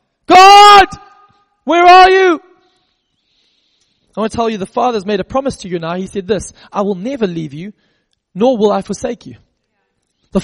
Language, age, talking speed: English, 20-39, 180 wpm